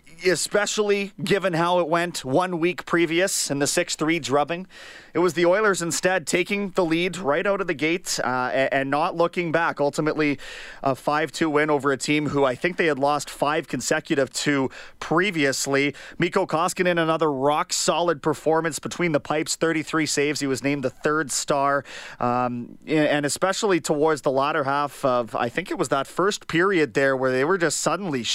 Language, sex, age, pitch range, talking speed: English, male, 30-49, 130-170 Hz, 180 wpm